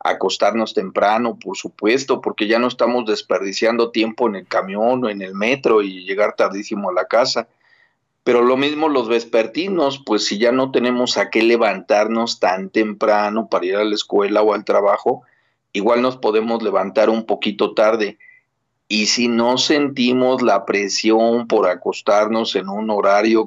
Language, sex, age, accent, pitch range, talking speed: Spanish, male, 40-59, Mexican, 105-125 Hz, 165 wpm